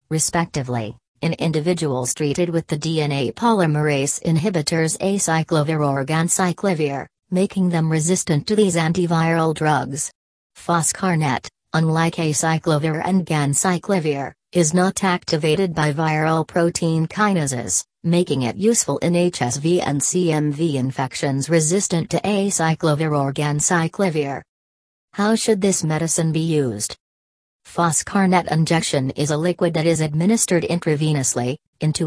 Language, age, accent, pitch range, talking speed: English, 40-59, American, 150-180 Hz, 110 wpm